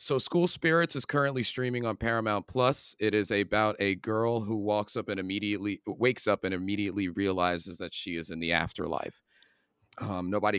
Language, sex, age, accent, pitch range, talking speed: English, male, 30-49, American, 100-120 Hz, 180 wpm